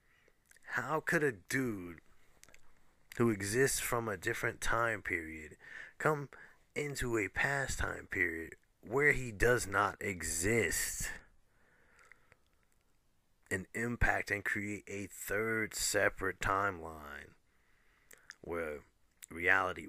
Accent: American